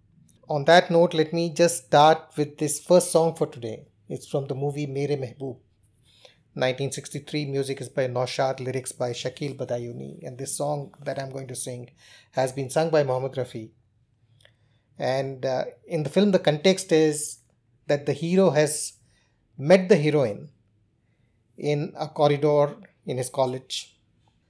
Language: Hindi